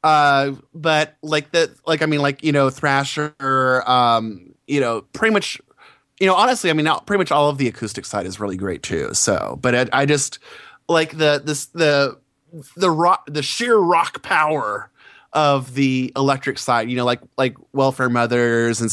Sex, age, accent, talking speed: male, 20-39, American, 185 wpm